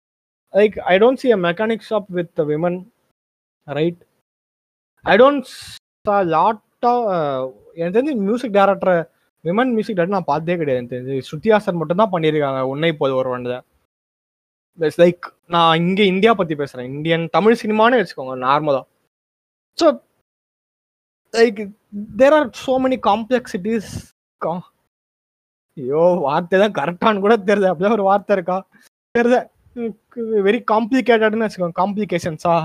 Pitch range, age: 165-230 Hz, 20-39